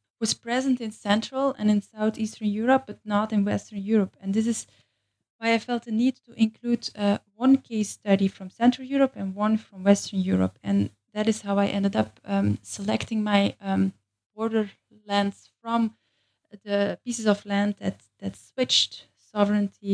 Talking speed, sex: 170 wpm, female